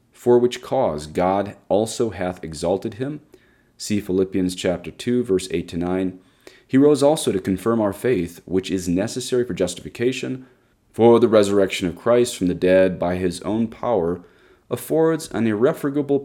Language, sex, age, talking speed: English, male, 30-49, 160 wpm